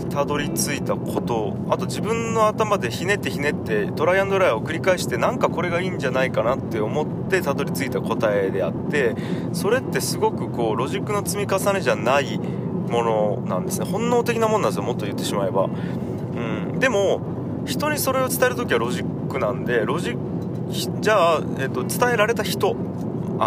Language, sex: Japanese, male